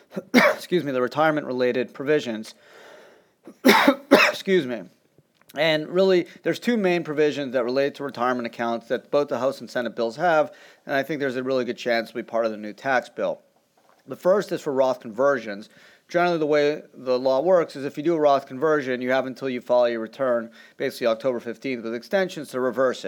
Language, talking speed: English, 200 wpm